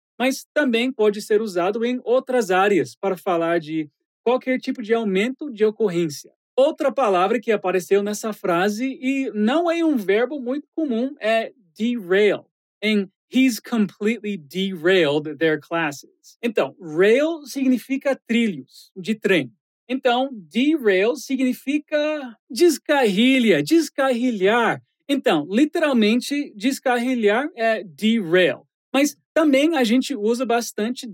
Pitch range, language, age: 210-265 Hz, Portuguese, 30-49